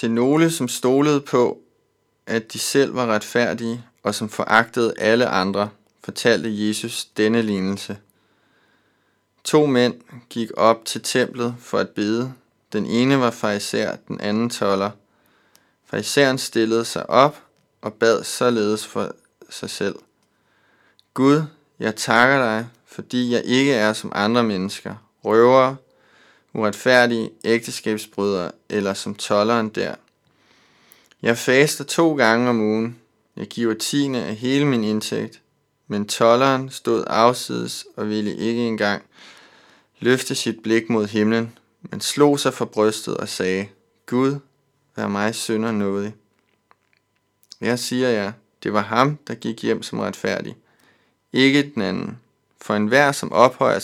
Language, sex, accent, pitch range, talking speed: Danish, male, native, 105-125 Hz, 135 wpm